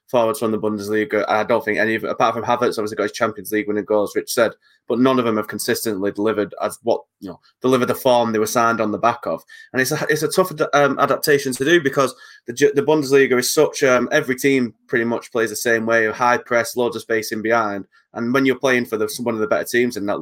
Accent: British